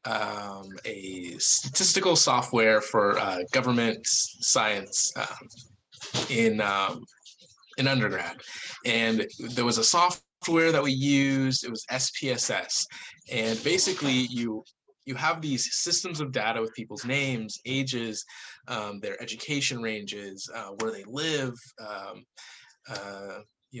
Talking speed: 115 wpm